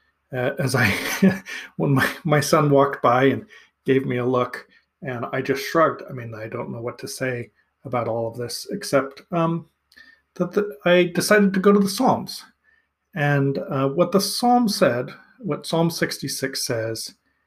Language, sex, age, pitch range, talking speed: English, male, 40-59, 125-175 Hz, 170 wpm